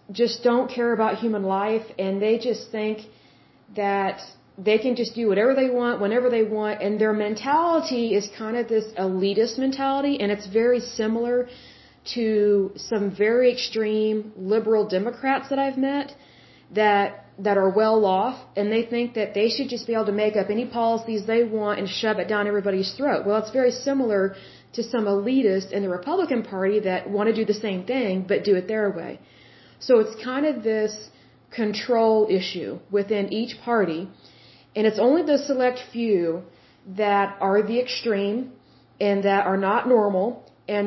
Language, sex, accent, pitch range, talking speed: Hindi, female, American, 200-235 Hz, 175 wpm